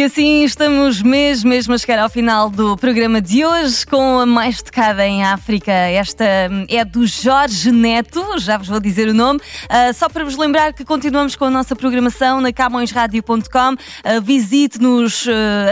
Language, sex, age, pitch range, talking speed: Portuguese, female, 20-39, 215-270 Hz, 175 wpm